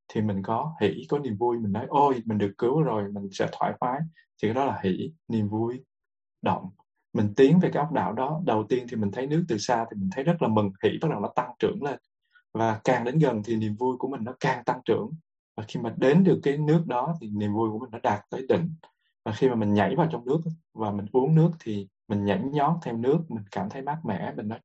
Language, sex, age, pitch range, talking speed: Vietnamese, male, 20-39, 105-145 Hz, 265 wpm